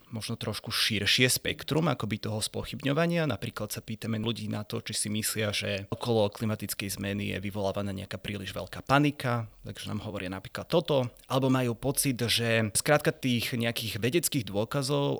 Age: 30-49